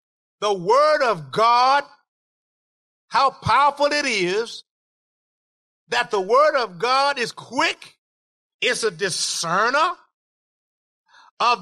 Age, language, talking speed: 50-69, English, 100 wpm